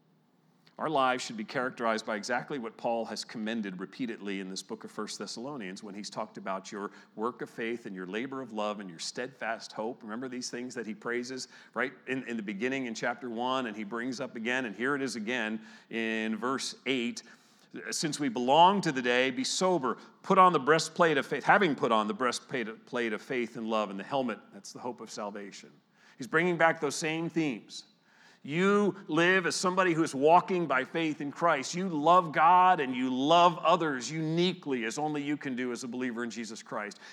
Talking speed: 210 wpm